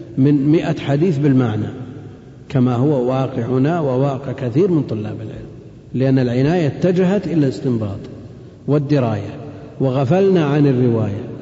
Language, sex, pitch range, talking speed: Arabic, male, 125-165 Hz, 110 wpm